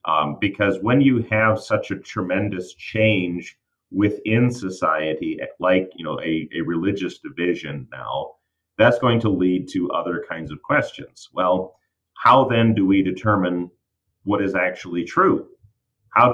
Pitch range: 90-110 Hz